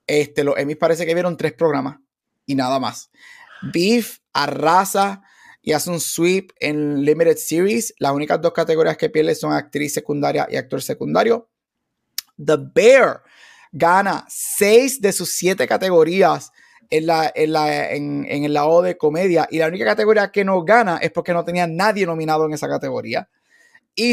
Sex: male